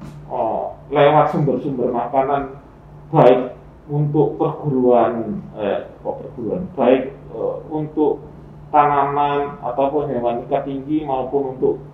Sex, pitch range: male, 125-160 Hz